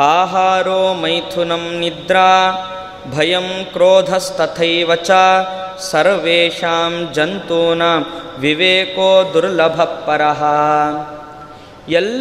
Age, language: 20-39, Kannada